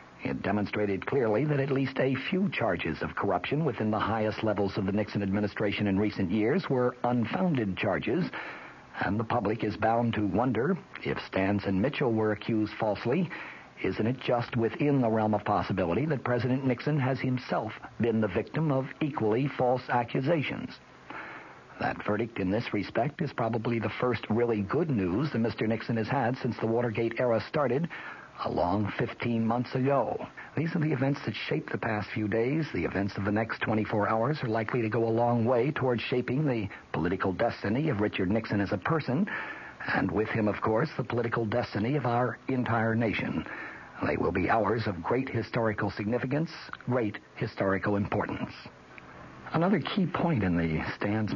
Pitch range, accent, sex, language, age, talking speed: 105-125 Hz, American, male, English, 50-69, 175 wpm